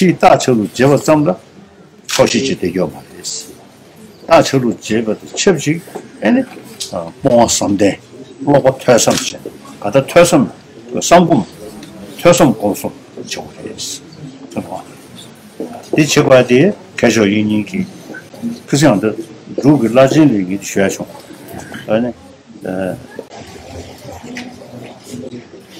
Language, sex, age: Chinese, male, 60-79